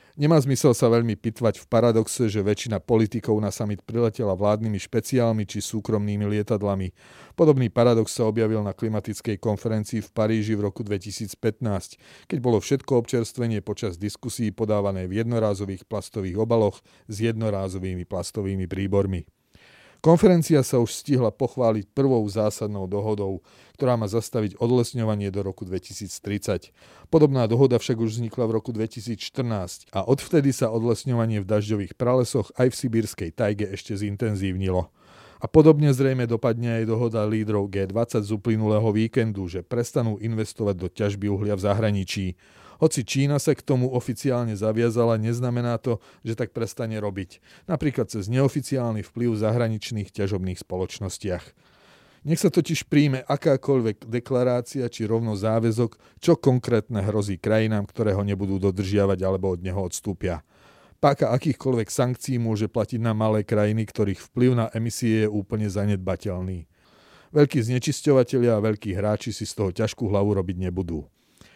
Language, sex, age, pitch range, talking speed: Slovak, male, 40-59, 100-120 Hz, 140 wpm